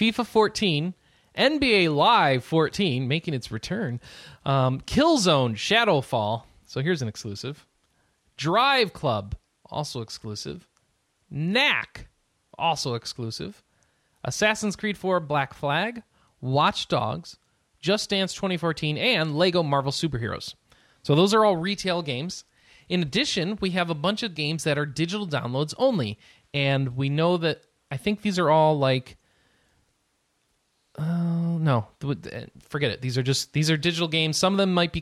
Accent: American